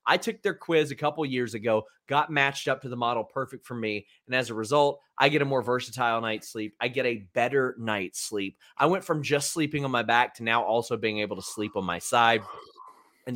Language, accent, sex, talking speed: English, American, male, 240 wpm